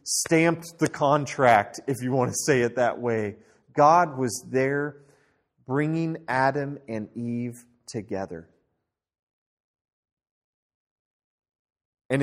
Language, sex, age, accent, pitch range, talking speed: English, male, 30-49, American, 110-155 Hz, 100 wpm